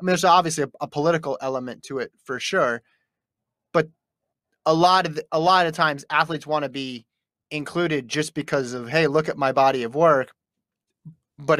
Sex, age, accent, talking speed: male, 30-49, American, 190 wpm